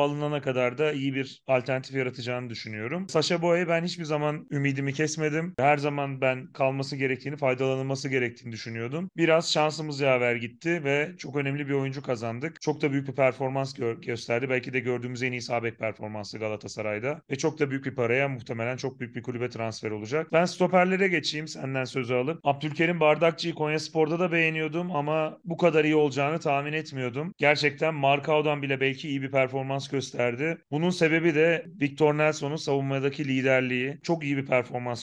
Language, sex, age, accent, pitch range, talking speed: Turkish, male, 30-49, native, 125-150 Hz, 170 wpm